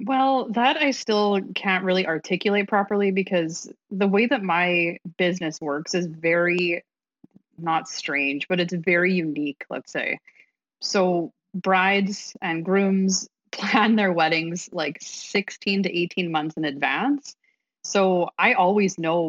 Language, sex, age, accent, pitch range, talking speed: English, female, 30-49, American, 160-205 Hz, 135 wpm